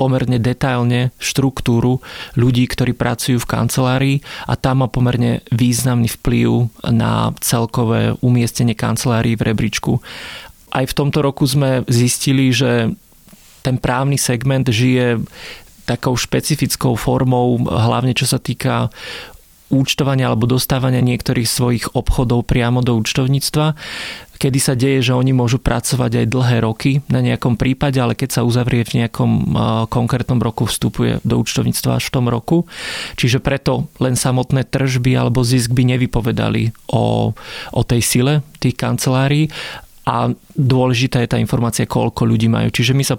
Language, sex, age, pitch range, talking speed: Slovak, male, 30-49, 120-130 Hz, 140 wpm